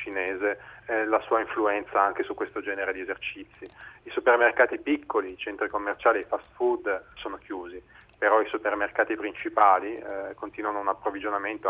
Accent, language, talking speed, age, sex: native, Italian, 155 wpm, 30-49, male